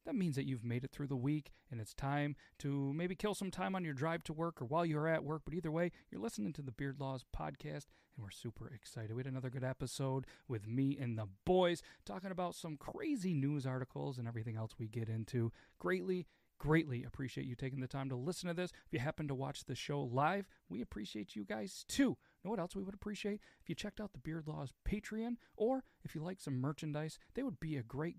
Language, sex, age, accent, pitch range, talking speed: English, male, 40-59, American, 125-185 Hz, 240 wpm